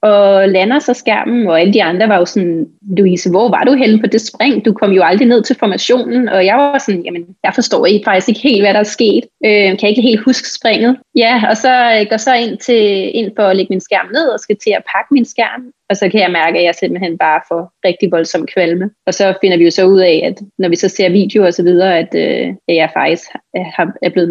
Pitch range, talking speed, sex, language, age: 195-230 Hz, 260 wpm, female, Danish, 30-49